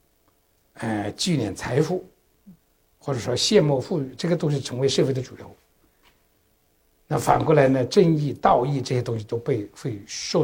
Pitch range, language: 140-200 Hz, Chinese